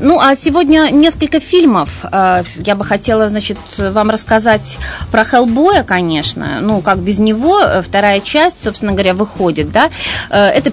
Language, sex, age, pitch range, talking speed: Russian, female, 30-49, 195-255 Hz, 140 wpm